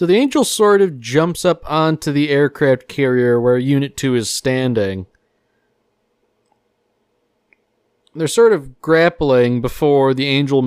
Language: English